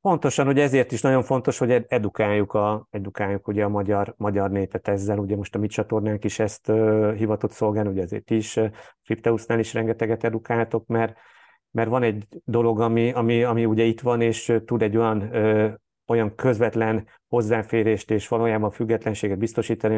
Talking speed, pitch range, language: 175 wpm, 105-115 Hz, Hungarian